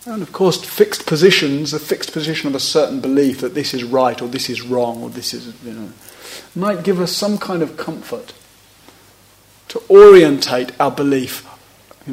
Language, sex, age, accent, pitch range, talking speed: English, male, 40-59, British, 105-155 Hz, 185 wpm